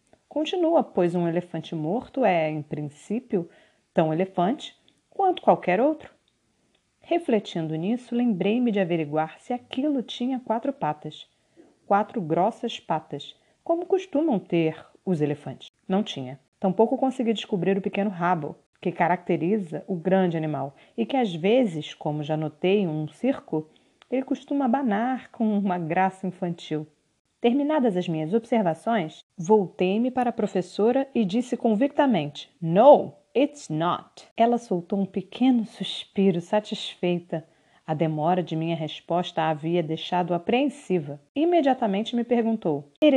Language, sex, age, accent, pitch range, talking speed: Portuguese, female, 40-59, Brazilian, 170-245 Hz, 130 wpm